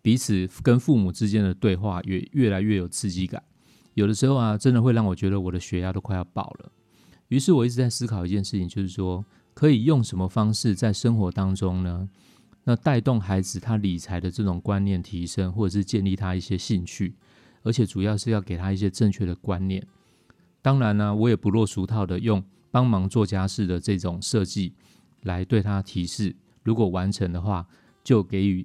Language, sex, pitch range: Chinese, male, 95-120 Hz